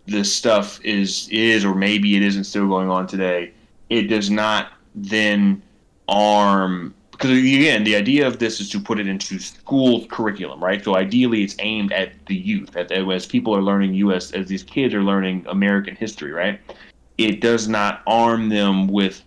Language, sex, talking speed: English, male, 180 wpm